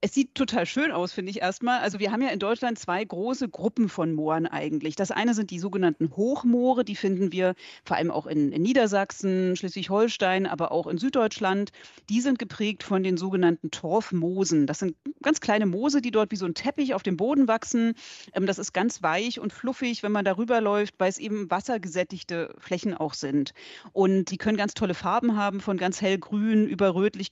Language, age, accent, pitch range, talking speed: German, 40-59, German, 185-225 Hz, 200 wpm